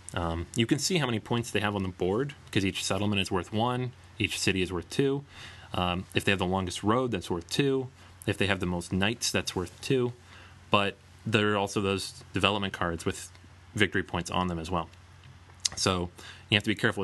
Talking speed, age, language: 220 wpm, 30-49, English